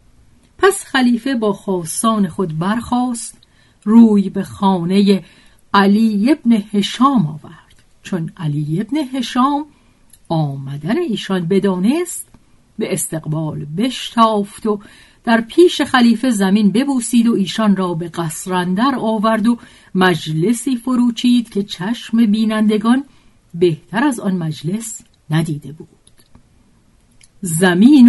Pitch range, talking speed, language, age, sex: 180-230 Hz, 105 wpm, Persian, 50-69, female